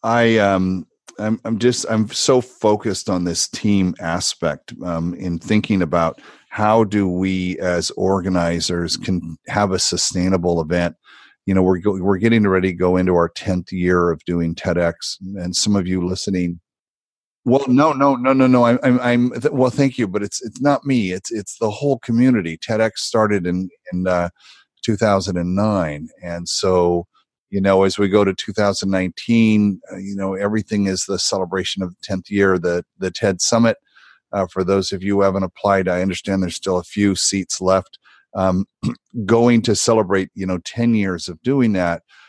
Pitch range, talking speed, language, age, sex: 90-110 Hz, 175 wpm, English, 40-59, male